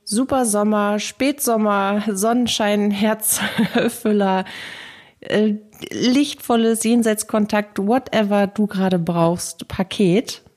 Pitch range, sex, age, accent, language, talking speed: 175-215 Hz, female, 30-49, German, German, 75 wpm